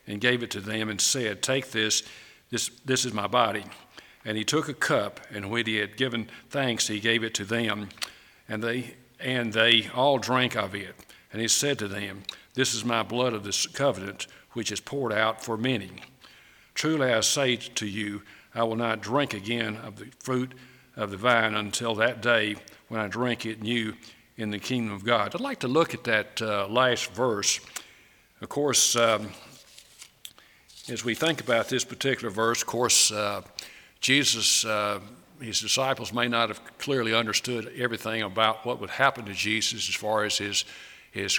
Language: English